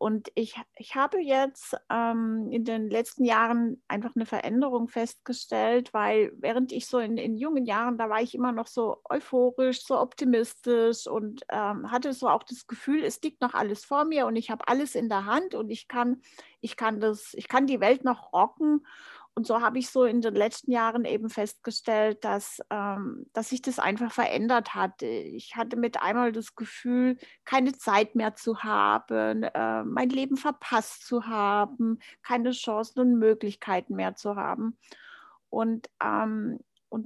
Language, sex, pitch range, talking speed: German, female, 220-260 Hz, 165 wpm